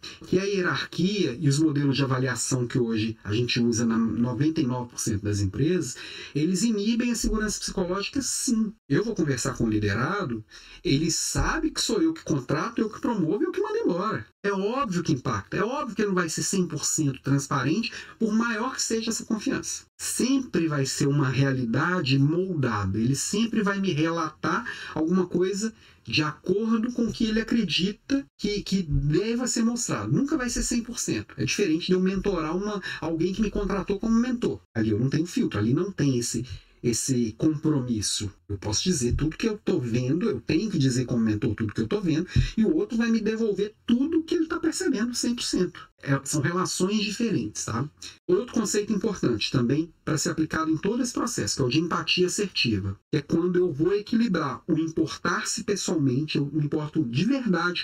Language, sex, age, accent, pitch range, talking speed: Portuguese, male, 40-59, Brazilian, 135-210 Hz, 185 wpm